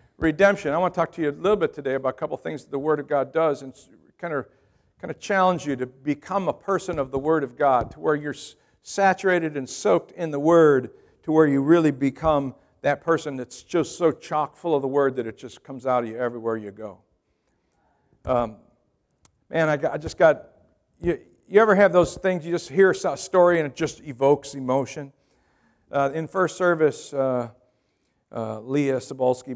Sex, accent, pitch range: male, American, 130-160 Hz